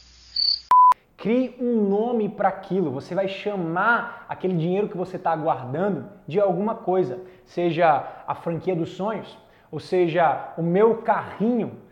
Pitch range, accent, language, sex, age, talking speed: 175-210 Hz, Brazilian, Portuguese, male, 20-39, 135 wpm